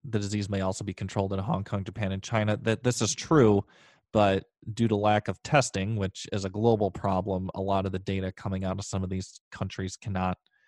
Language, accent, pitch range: English, American, 95-115 Hz